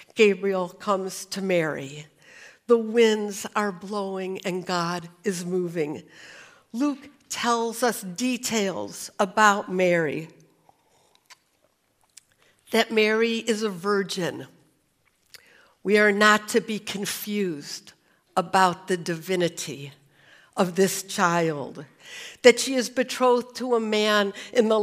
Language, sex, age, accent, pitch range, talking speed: English, female, 60-79, American, 185-225 Hz, 105 wpm